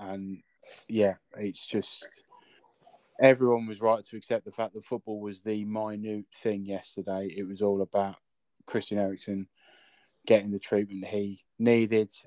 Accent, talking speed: British, 140 wpm